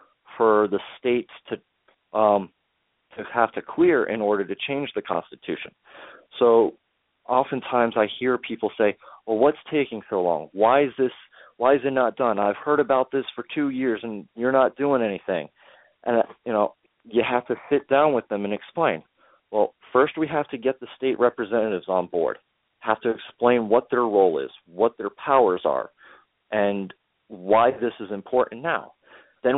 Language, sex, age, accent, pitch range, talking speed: English, male, 40-59, American, 105-135 Hz, 175 wpm